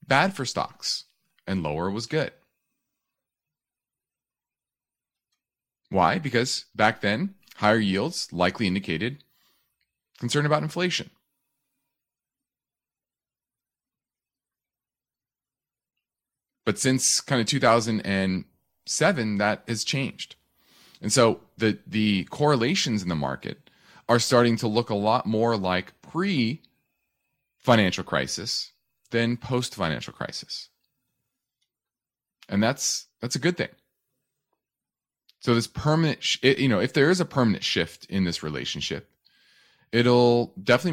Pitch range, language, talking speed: 95-130 Hz, English, 105 wpm